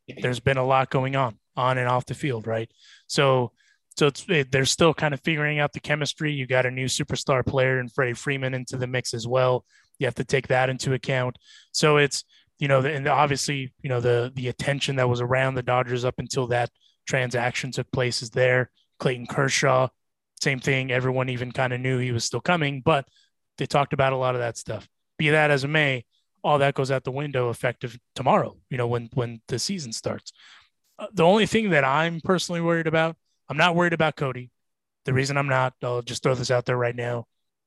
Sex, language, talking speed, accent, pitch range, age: male, English, 220 wpm, American, 125-145 Hz, 20-39